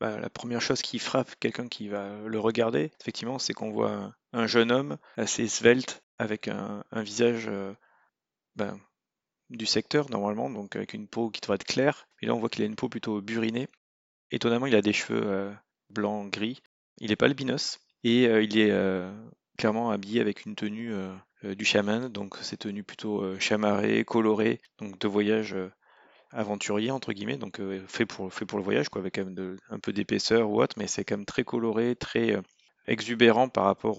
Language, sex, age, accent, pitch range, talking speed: French, male, 30-49, French, 100-115 Hz, 200 wpm